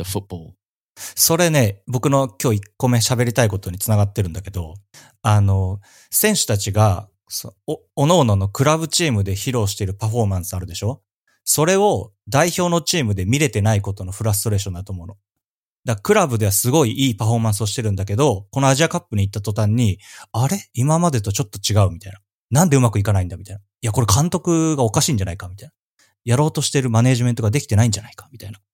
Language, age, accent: English, 30-49, Japanese